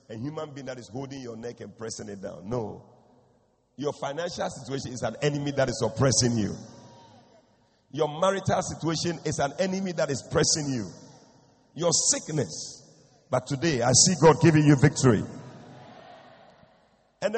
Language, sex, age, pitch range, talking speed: English, male, 50-69, 125-180 Hz, 150 wpm